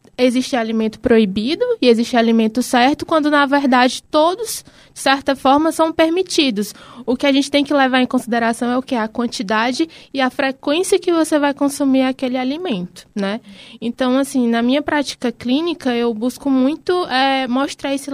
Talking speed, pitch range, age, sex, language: 170 wpm, 220-280 Hz, 20-39, female, Portuguese